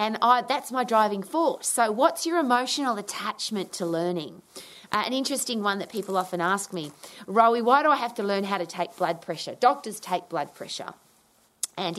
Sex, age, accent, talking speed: female, 30-49, Australian, 190 wpm